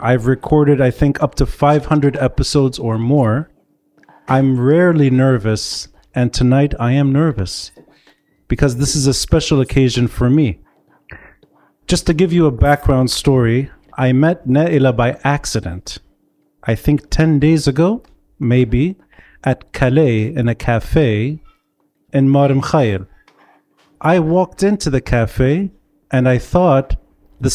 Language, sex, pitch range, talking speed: English, male, 120-155 Hz, 130 wpm